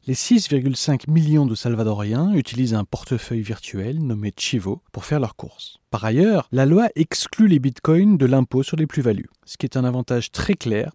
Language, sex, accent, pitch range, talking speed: French, male, French, 115-160 Hz, 185 wpm